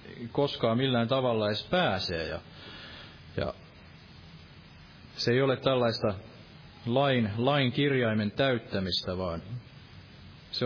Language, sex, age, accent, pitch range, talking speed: Finnish, male, 30-49, native, 100-130 Hz, 95 wpm